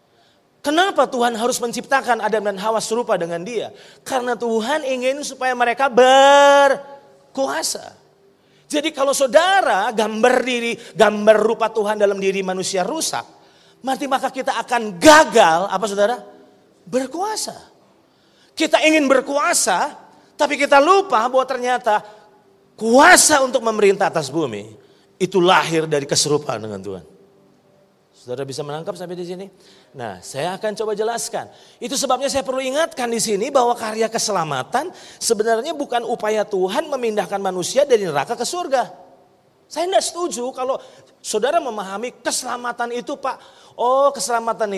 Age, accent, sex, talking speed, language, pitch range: 30-49, native, male, 130 wpm, Indonesian, 200-270 Hz